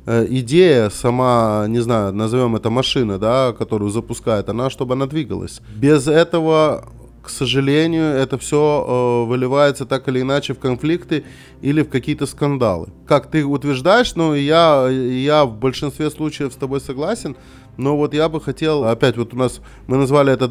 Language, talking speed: Russian, 165 wpm